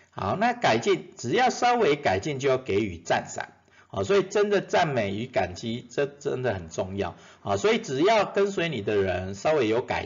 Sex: male